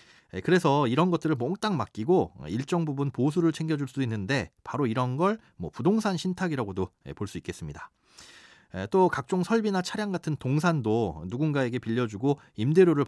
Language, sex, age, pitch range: Korean, male, 40-59, 110-165 Hz